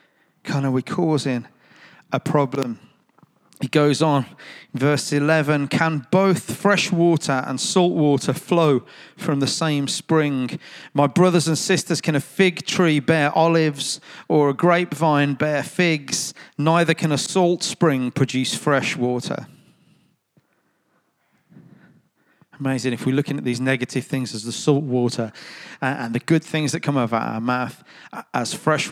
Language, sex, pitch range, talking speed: English, male, 130-160 Hz, 145 wpm